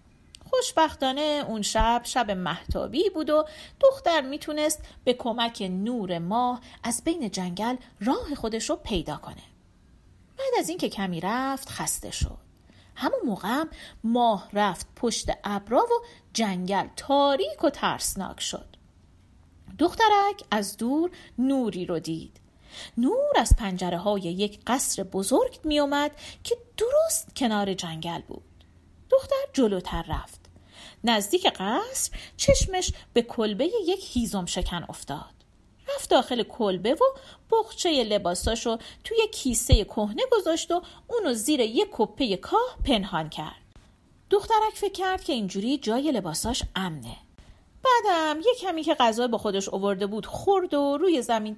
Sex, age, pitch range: female, 40-59, 205-330 Hz